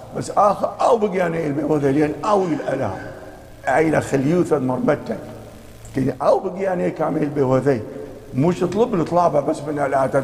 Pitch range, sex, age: 140-200 Hz, male, 50-69